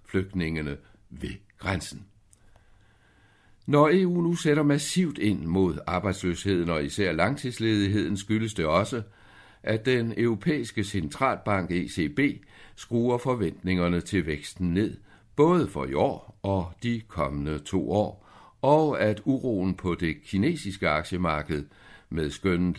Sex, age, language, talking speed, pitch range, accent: male, 60-79, Danish, 120 wpm, 95-120 Hz, native